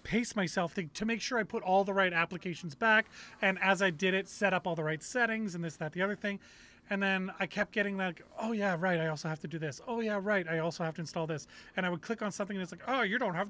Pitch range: 170-205 Hz